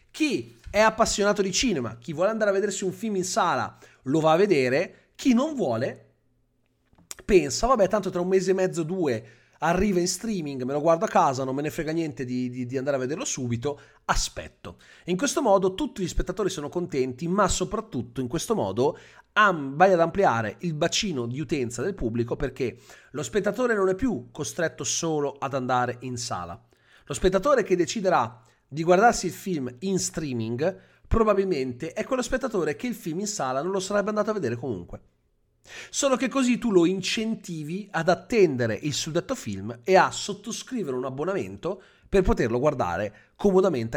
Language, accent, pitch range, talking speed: Italian, native, 140-215 Hz, 180 wpm